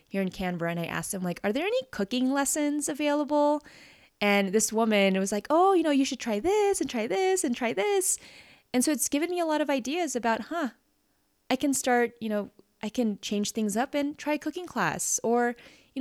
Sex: female